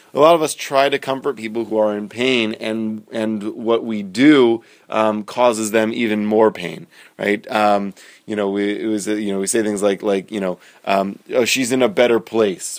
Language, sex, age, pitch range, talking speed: English, male, 30-49, 105-130 Hz, 215 wpm